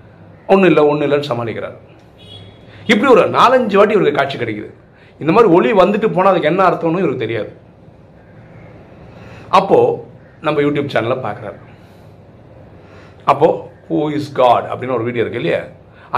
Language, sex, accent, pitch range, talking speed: Tamil, male, native, 105-150 Hz, 120 wpm